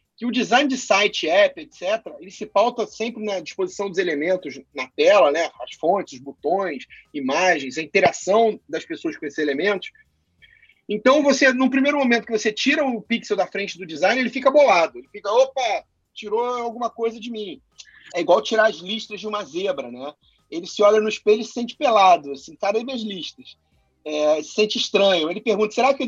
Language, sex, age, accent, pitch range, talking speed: Portuguese, male, 30-49, Brazilian, 200-265 Hz, 200 wpm